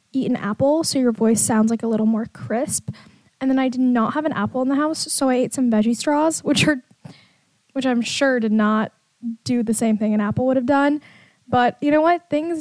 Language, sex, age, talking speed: English, female, 10-29, 235 wpm